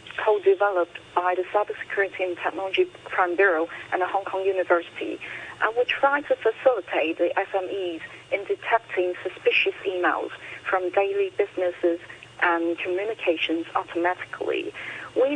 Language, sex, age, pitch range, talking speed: English, female, 40-59, 180-275 Hz, 115 wpm